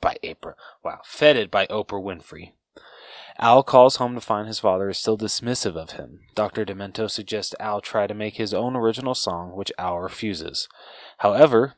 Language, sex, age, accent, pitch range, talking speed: English, male, 20-39, American, 95-110 Hz, 175 wpm